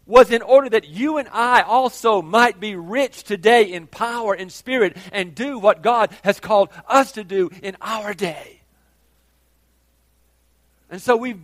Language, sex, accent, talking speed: English, male, American, 165 wpm